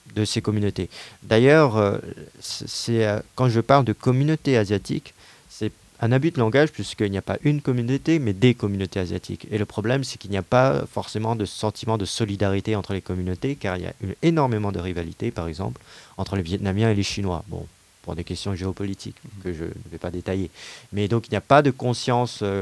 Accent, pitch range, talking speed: French, 95-120 Hz, 205 wpm